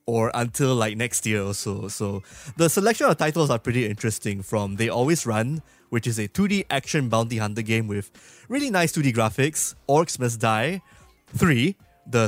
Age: 20-39